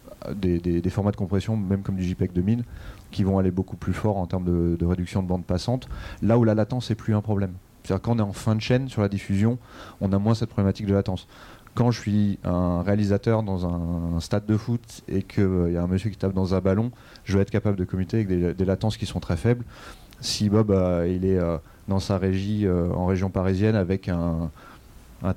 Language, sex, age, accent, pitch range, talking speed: French, male, 30-49, French, 95-110 Hz, 245 wpm